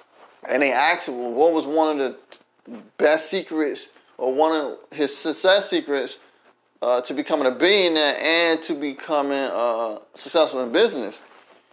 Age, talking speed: 30-49, 155 wpm